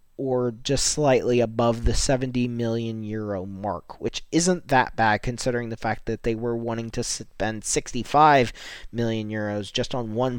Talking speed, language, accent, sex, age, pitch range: 160 wpm, English, American, male, 20-39, 115-140 Hz